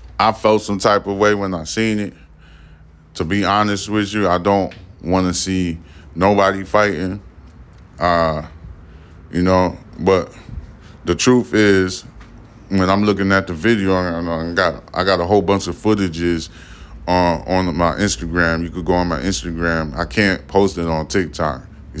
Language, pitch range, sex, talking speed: English, 85-110 Hz, male, 170 wpm